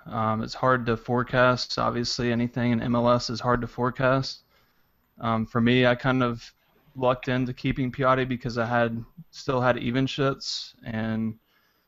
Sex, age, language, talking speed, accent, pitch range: male, 20-39, English, 155 wpm, American, 115-125 Hz